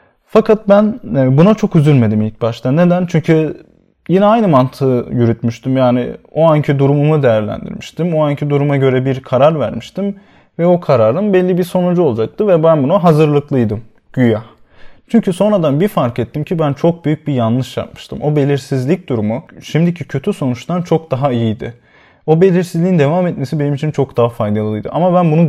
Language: Turkish